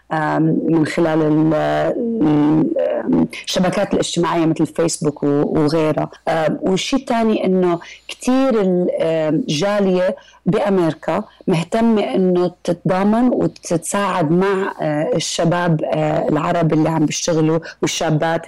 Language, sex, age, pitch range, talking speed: English, female, 30-49, 160-195 Hz, 80 wpm